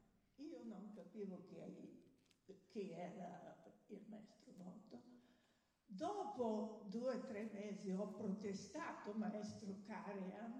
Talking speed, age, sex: 80 wpm, 60-79, female